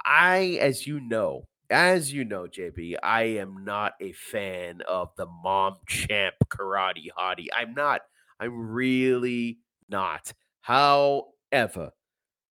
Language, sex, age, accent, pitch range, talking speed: English, male, 30-49, American, 90-120 Hz, 120 wpm